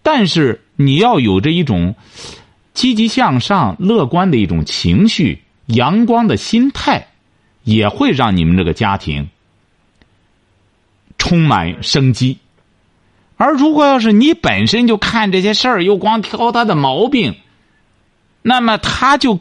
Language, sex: Chinese, male